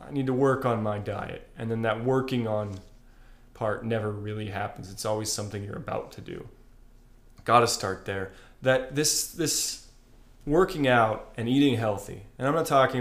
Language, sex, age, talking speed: English, male, 30-49, 175 wpm